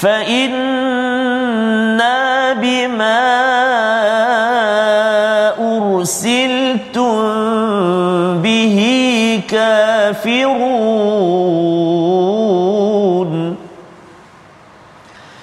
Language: Malayalam